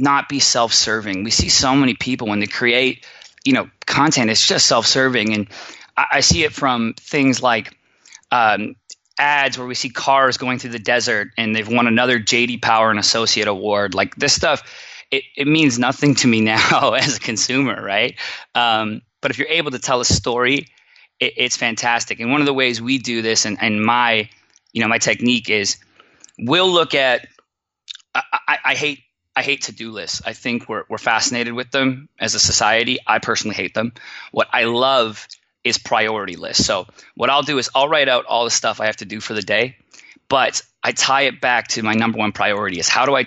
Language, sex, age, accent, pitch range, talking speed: English, male, 20-39, American, 110-130 Hz, 205 wpm